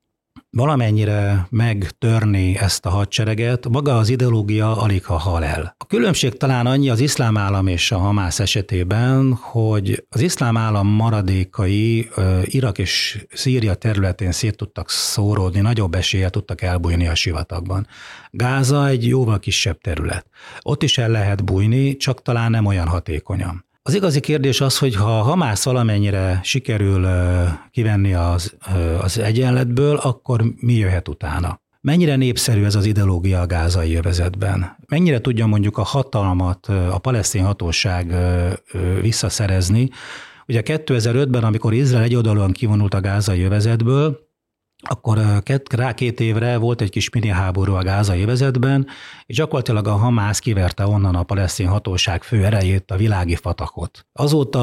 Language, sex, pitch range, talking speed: Hungarian, male, 95-120 Hz, 140 wpm